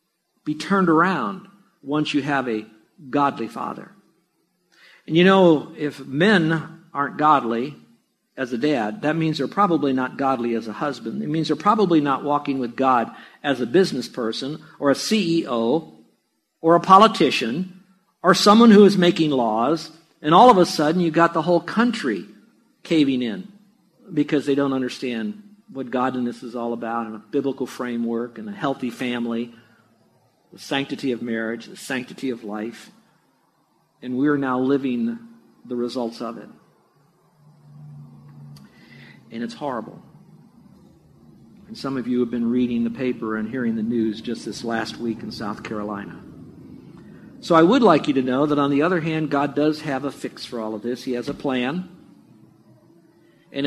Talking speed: 165 wpm